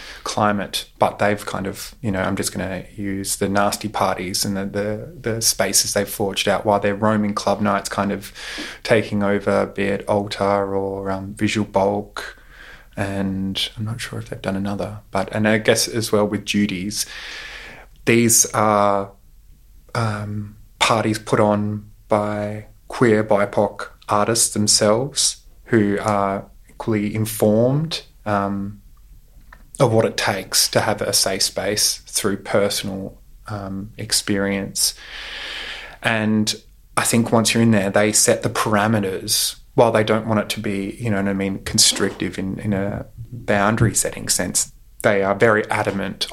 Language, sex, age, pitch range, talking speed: English, male, 20-39, 100-110 Hz, 150 wpm